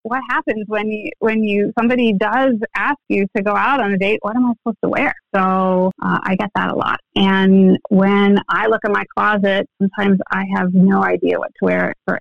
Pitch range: 180-210 Hz